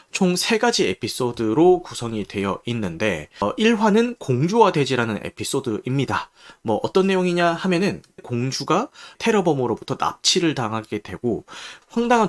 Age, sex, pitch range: 30-49, male, 120-185 Hz